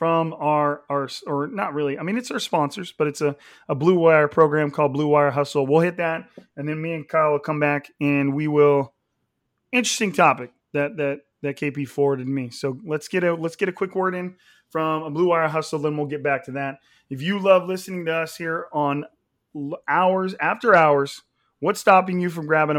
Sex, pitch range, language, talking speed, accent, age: male, 140-165 Hz, English, 215 wpm, American, 30-49